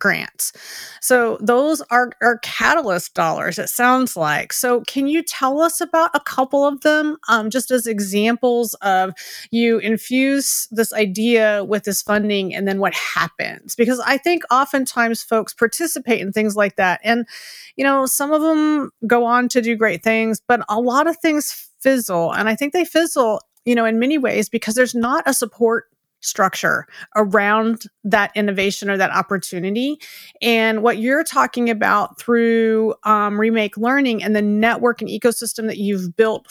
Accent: American